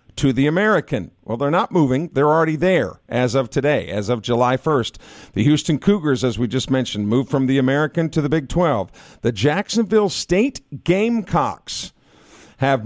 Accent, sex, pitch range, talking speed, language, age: American, male, 130-160 Hz, 175 wpm, English, 50-69